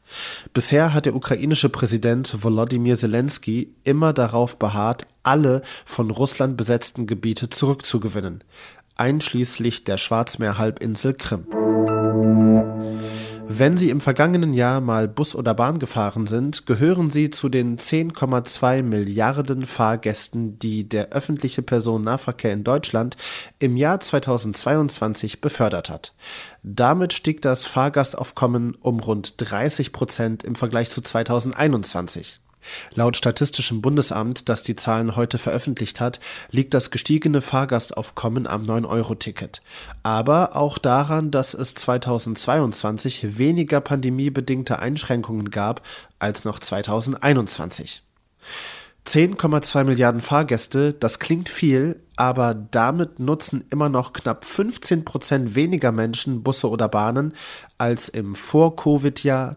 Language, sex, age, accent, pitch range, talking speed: German, male, 20-39, German, 110-140 Hz, 110 wpm